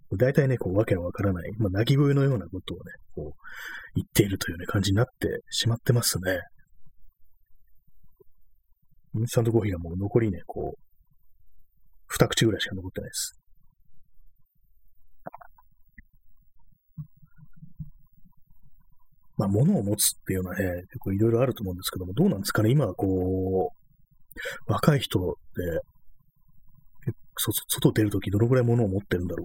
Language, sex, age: Japanese, male, 30-49